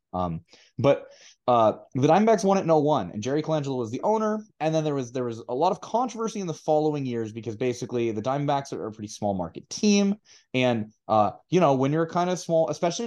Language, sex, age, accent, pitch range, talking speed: English, male, 20-39, American, 95-150 Hz, 225 wpm